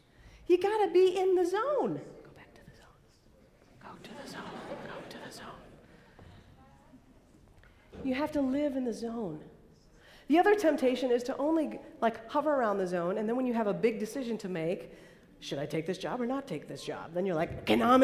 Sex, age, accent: female, 40-59, American